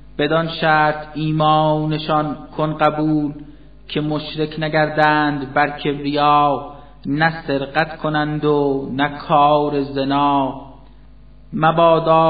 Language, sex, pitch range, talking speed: Persian, male, 145-160 Hz, 90 wpm